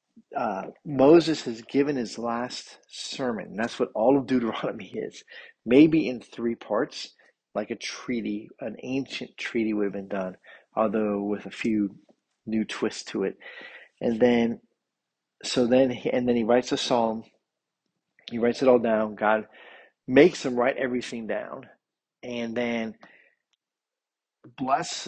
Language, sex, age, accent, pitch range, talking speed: English, male, 40-59, American, 110-130 Hz, 145 wpm